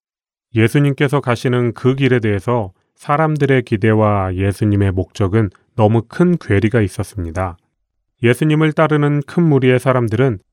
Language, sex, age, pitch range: Korean, male, 30-49, 105-130 Hz